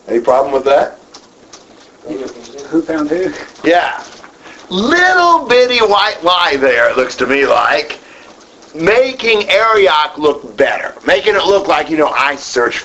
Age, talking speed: 50-69, 140 wpm